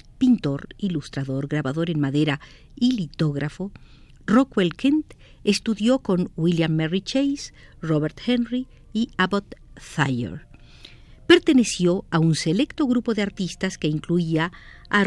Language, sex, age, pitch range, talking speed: Spanish, female, 50-69, 155-245 Hz, 115 wpm